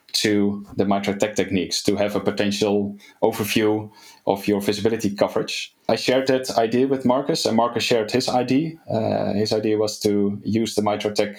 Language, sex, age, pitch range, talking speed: English, male, 20-39, 100-115 Hz, 170 wpm